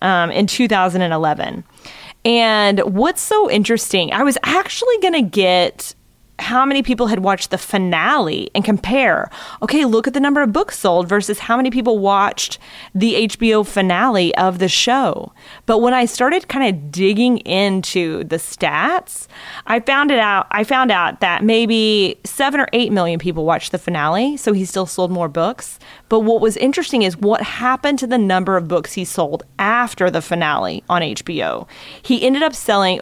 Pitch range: 185-250 Hz